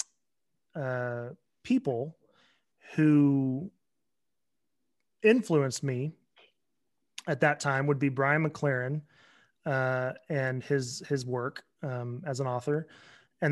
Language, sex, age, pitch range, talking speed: English, male, 30-49, 130-155 Hz, 100 wpm